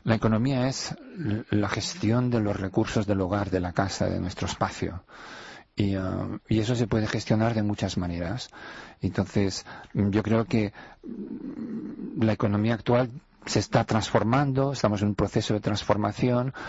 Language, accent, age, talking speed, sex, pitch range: Spanish, Spanish, 40-59, 145 wpm, male, 100-125 Hz